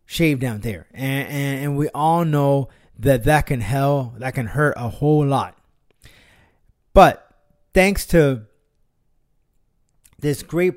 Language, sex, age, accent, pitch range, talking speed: English, male, 30-49, American, 125-160 Hz, 135 wpm